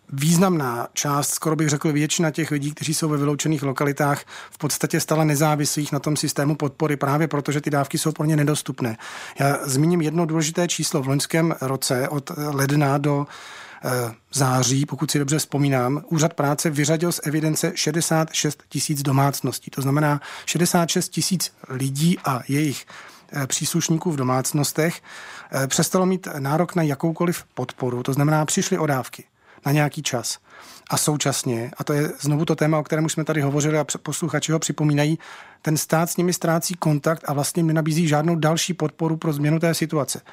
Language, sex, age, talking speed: Czech, male, 40-59, 160 wpm